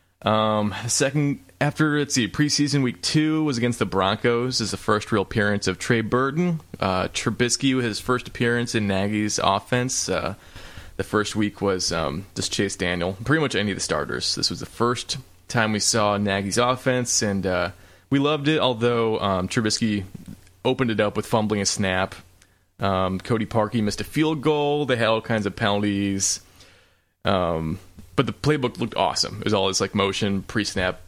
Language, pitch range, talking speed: English, 95-125 Hz, 185 wpm